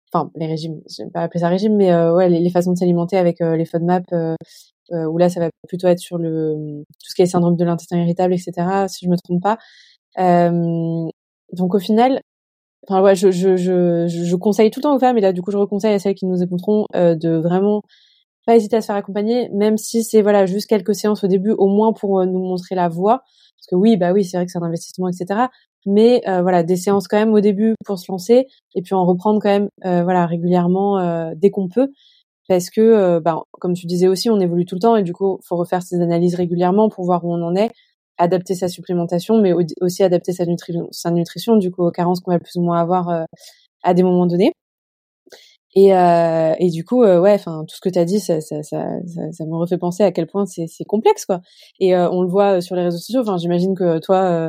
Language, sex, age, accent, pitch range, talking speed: French, female, 20-39, French, 175-205 Hz, 255 wpm